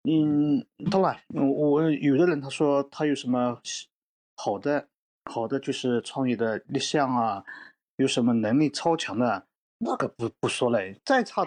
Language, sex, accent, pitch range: Chinese, male, native, 125-170 Hz